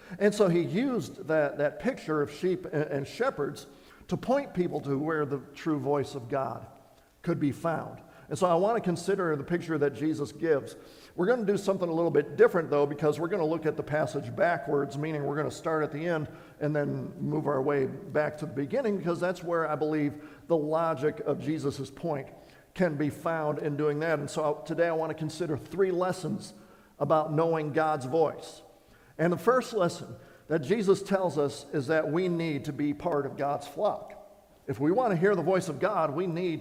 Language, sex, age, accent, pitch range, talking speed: English, male, 50-69, American, 150-185 Hz, 210 wpm